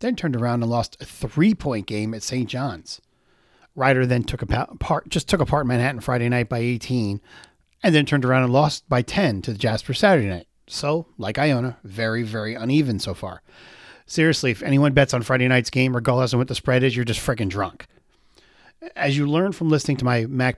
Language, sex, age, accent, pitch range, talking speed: English, male, 40-59, American, 115-145 Hz, 215 wpm